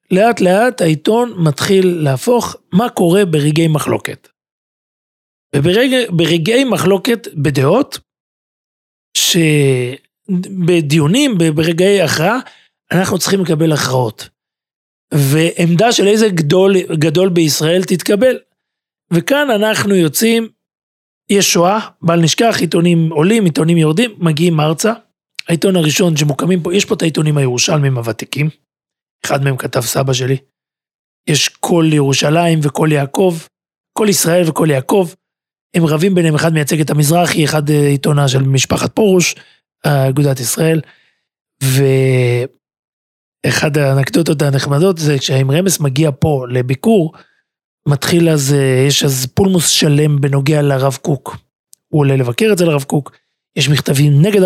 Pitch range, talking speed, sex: 145-185 Hz, 115 wpm, male